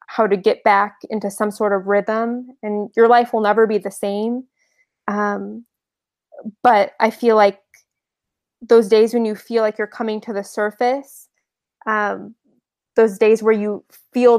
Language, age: English, 20-39